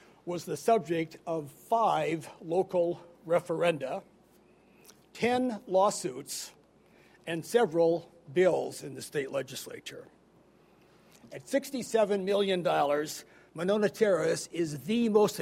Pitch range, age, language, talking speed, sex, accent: 160-205 Hz, 60-79, English, 95 wpm, male, American